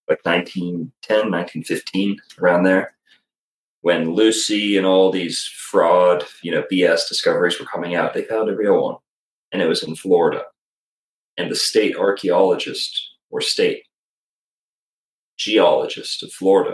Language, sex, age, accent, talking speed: English, male, 30-49, American, 135 wpm